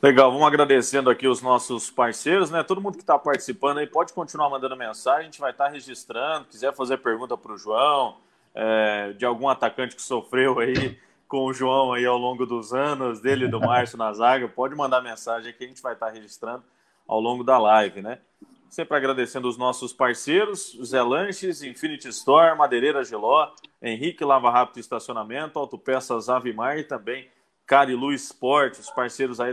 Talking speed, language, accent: 185 wpm, Portuguese, Brazilian